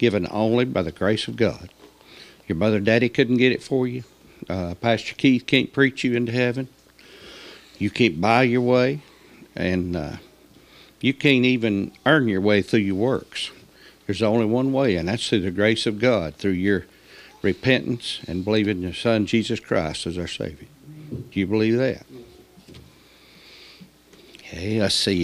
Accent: American